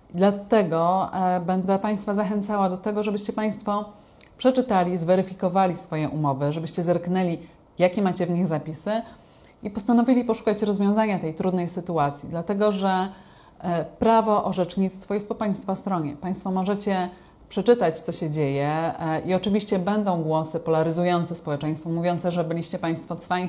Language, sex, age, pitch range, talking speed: Polish, female, 30-49, 170-205 Hz, 130 wpm